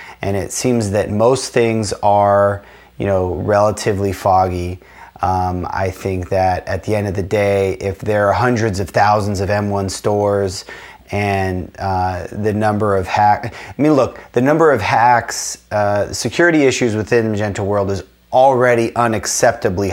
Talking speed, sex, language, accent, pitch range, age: 160 wpm, male, English, American, 95-110 Hz, 30-49